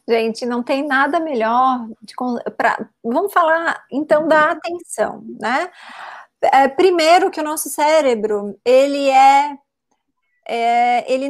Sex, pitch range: female, 235-310 Hz